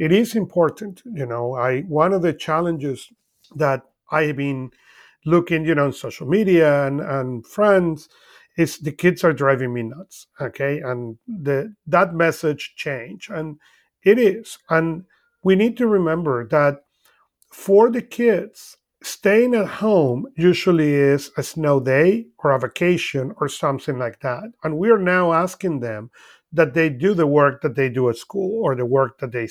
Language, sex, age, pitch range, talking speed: English, male, 40-59, 145-190 Hz, 170 wpm